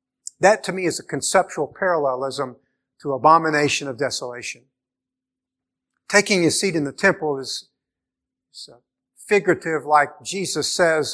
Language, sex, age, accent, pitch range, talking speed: English, male, 50-69, American, 135-180 Hz, 120 wpm